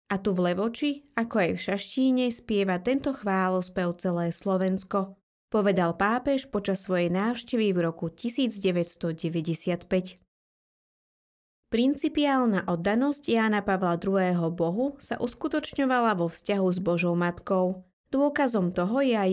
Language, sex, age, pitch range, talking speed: Slovak, female, 20-39, 180-240 Hz, 120 wpm